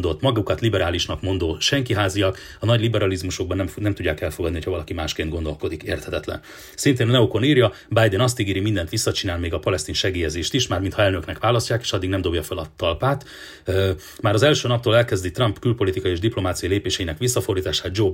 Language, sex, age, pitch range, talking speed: Hungarian, male, 30-49, 90-110 Hz, 175 wpm